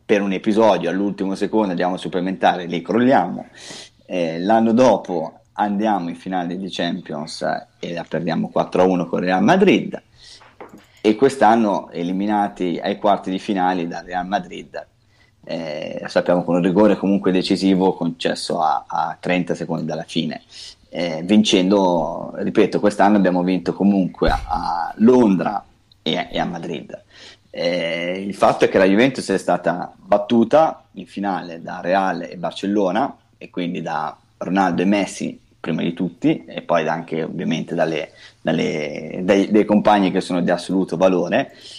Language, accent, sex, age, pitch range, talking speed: Italian, native, male, 30-49, 90-105 Hz, 145 wpm